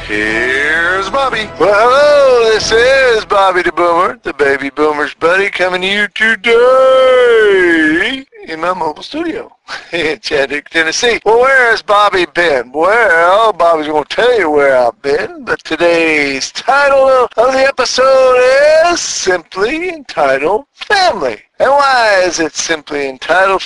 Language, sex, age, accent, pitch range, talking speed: English, male, 50-69, American, 170-275 Hz, 135 wpm